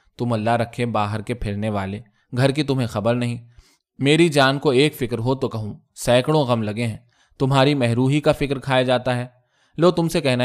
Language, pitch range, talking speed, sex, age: Urdu, 115-145 Hz, 200 wpm, male, 20-39